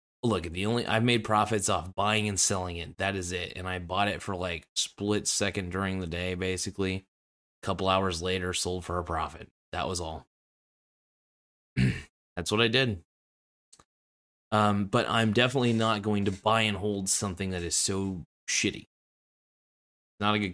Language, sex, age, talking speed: English, male, 20-39, 175 wpm